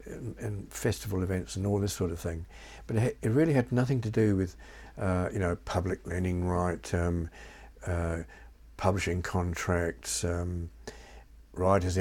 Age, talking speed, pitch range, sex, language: 60-79, 145 wpm, 85-105 Hz, male, English